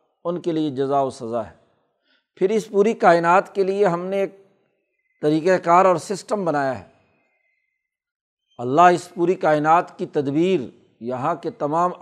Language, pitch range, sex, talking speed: Urdu, 160-205 Hz, male, 155 wpm